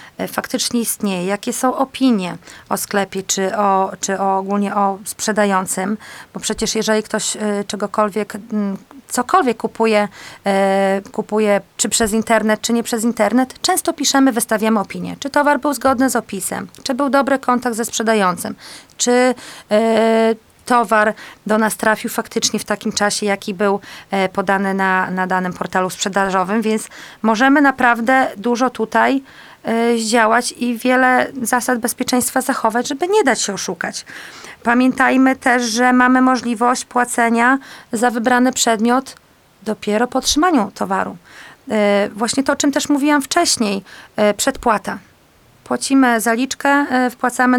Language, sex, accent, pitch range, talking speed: Polish, female, native, 210-255 Hz, 130 wpm